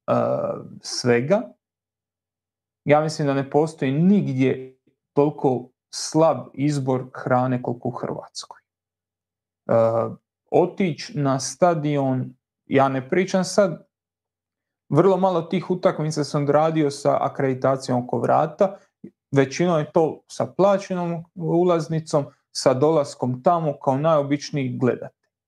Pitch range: 125-155 Hz